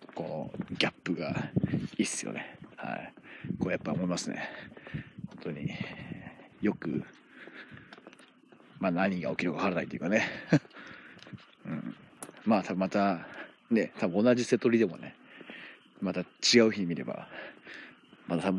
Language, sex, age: Japanese, male, 40-59